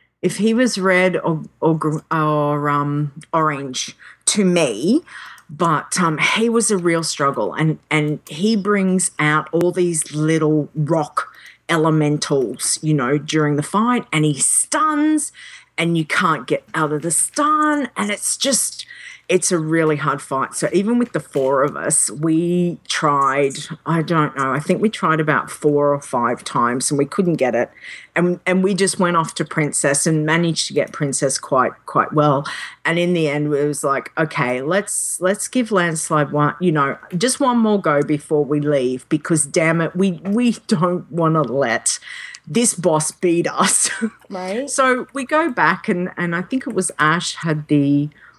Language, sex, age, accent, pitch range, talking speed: English, female, 40-59, Australian, 150-185 Hz, 175 wpm